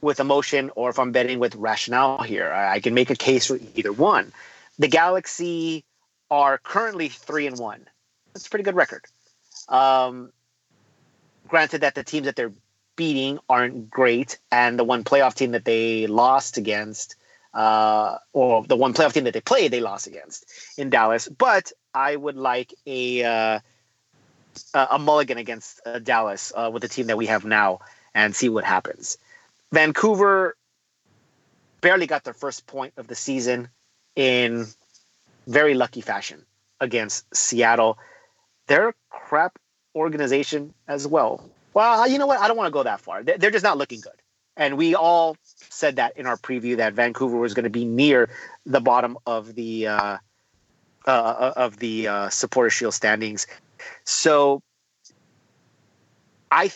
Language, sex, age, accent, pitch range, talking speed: English, male, 30-49, American, 115-145 Hz, 160 wpm